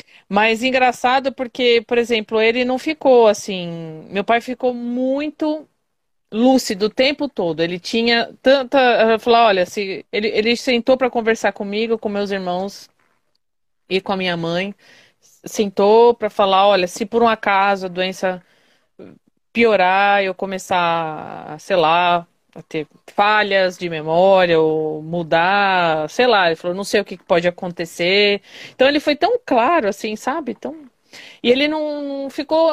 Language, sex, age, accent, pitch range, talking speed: Portuguese, female, 20-39, Brazilian, 185-255 Hz, 150 wpm